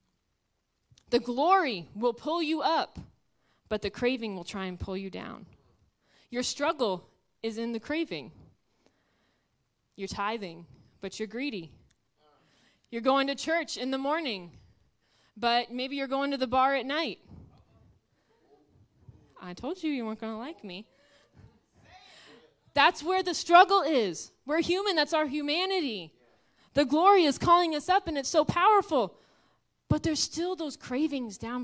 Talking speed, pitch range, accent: 145 wpm, 220-300 Hz, American